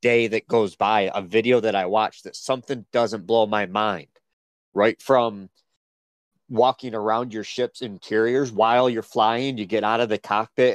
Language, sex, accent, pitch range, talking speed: English, male, American, 115-135 Hz, 175 wpm